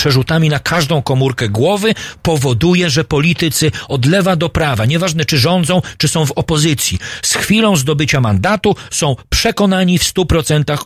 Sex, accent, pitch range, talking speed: male, native, 130-185 Hz, 150 wpm